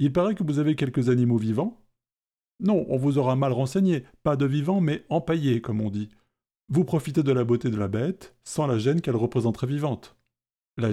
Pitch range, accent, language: 120-160 Hz, French, French